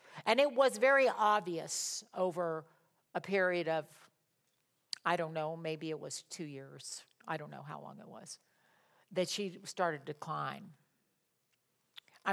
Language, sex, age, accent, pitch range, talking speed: English, female, 50-69, American, 155-195 Hz, 145 wpm